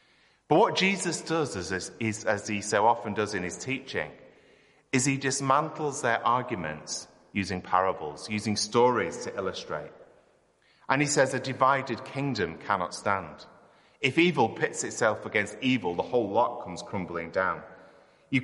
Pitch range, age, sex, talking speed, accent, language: 95-135 Hz, 30-49, male, 145 wpm, British, English